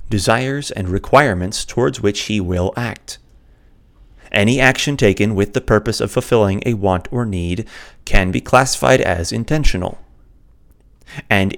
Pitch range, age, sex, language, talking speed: 90-110 Hz, 30-49, male, English, 135 wpm